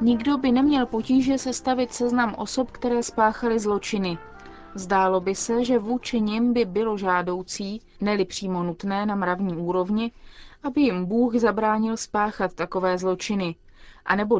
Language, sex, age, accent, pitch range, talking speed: Czech, female, 20-39, native, 185-235 Hz, 140 wpm